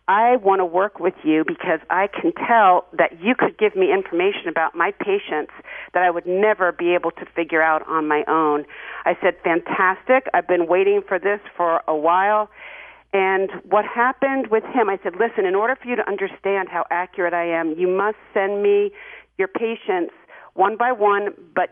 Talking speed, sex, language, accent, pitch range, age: 195 wpm, female, English, American, 175-215 Hz, 50-69